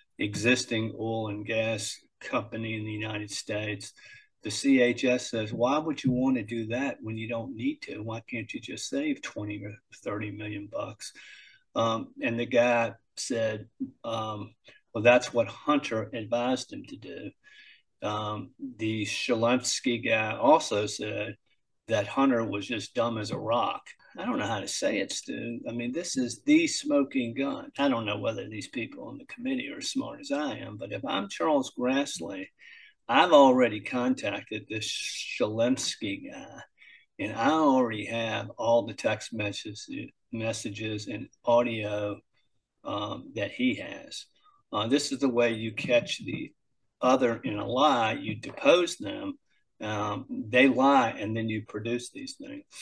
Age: 50-69